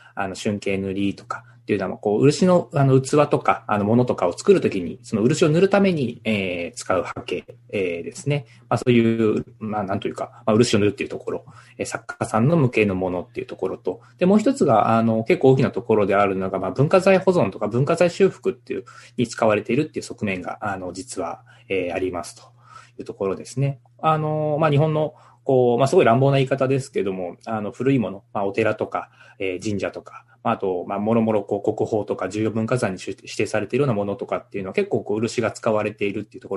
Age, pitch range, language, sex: 20-39, 100-135 Hz, Japanese, male